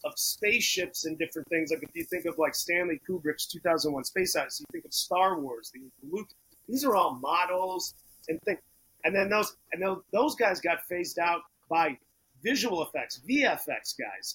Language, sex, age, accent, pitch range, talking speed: English, male, 30-49, American, 150-190 Hz, 190 wpm